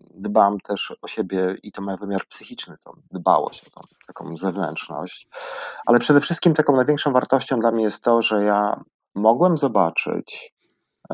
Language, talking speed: Polish, 150 wpm